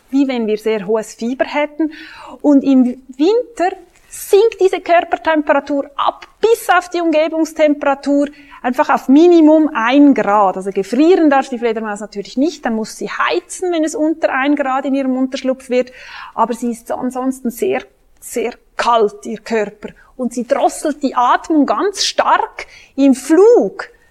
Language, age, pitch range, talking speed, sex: English, 30-49, 235-320 Hz, 150 wpm, female